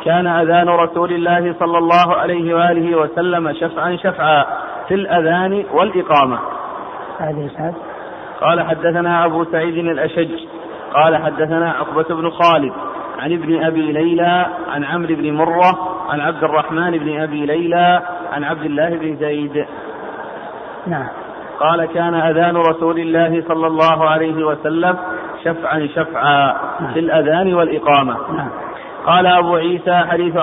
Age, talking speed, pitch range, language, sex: 40-59, 125 wpm, 155-175 Hz, Arabic, male